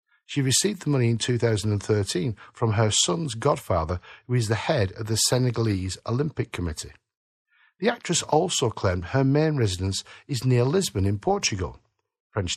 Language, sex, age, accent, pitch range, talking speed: English, male, 50-69, British, 110-150 Hz, 155 wpm